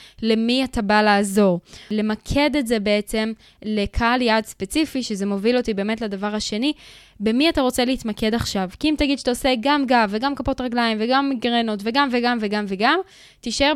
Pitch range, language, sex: 215-265 Hz, Hebrew, female